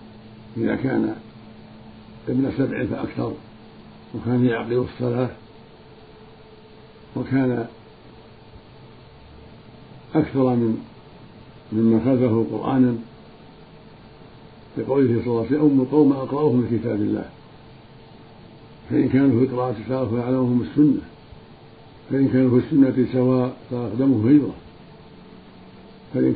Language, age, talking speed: Arabic, 60-79, 85 wpm